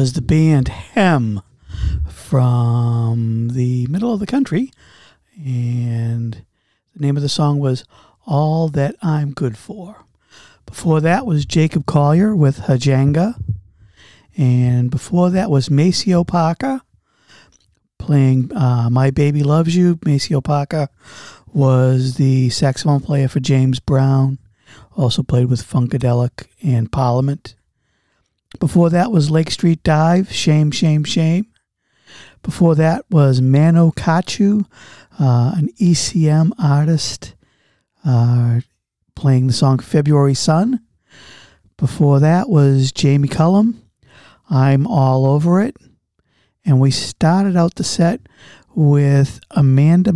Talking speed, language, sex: 115 wpm, English, male